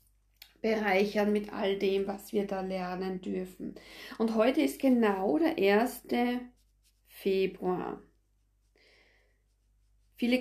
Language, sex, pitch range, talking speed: German, female, 195-235 Hz, 100 wpm